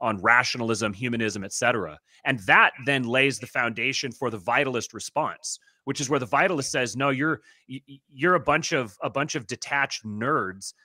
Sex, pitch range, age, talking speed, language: male, 115-145 Hz, 30-49, 175 wpm, English